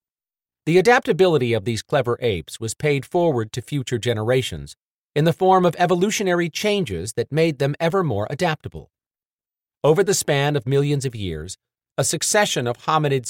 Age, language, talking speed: 40-59, English, 160 wpm